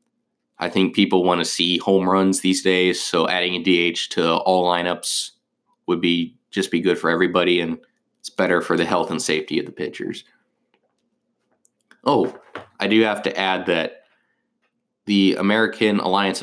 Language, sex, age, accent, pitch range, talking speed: English, male, 20-39, American, 90-105 Hz, 165 wpm